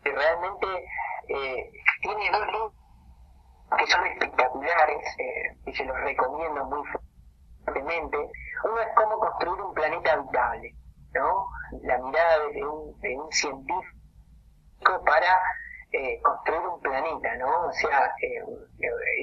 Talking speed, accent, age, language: 120 wpm, Argentinian, 30-49, Spanish